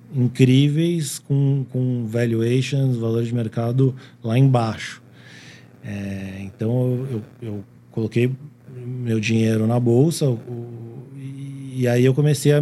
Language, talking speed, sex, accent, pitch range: Portuguese, 120 wpm, male, Brazilian, 110-135 Hz